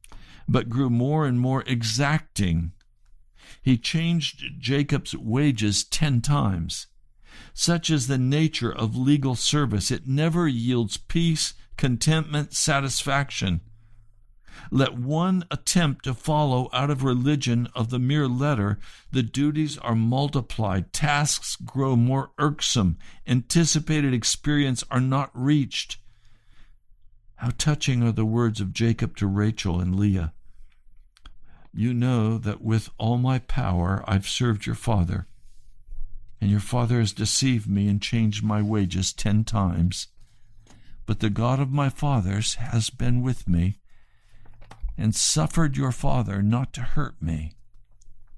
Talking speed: 125 wpm